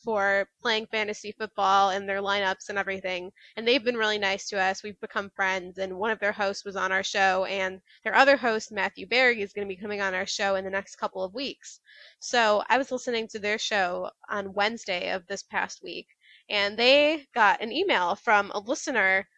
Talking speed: 215 wpm